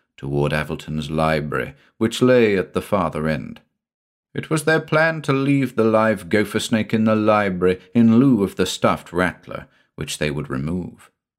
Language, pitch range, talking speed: English, 85-130 Hz, 170 wpm